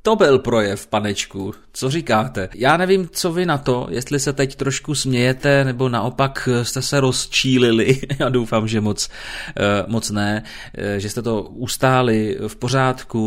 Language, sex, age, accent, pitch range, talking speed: Czech, male, 30-49, native, 110-135 Hz, 155 wpm